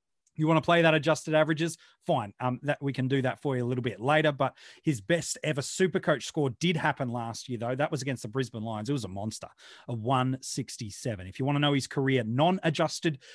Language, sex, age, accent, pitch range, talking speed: English, male, 30-49, Australian, 125-160 Hz, 235 wpm